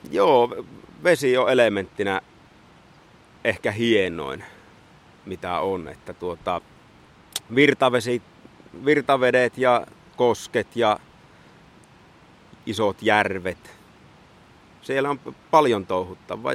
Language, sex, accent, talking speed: Finnish, male, native, 70 wpm